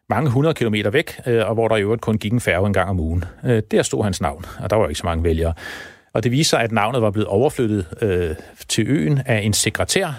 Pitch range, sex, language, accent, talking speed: 95-120 Hz, male, Danish, native, 245 wpm